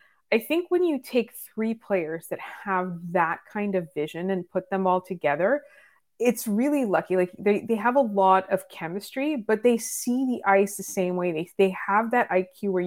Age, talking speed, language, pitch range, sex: 20-39, 200 wpm, English, 185-225 Hz, female